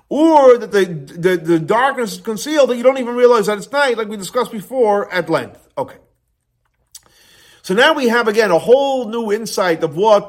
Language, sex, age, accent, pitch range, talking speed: English, male, 40-59, American, 155-225 Hz, 200 wpm